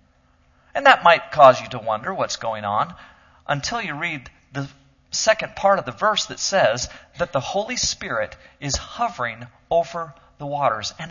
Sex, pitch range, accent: male, 115-175 Hz, American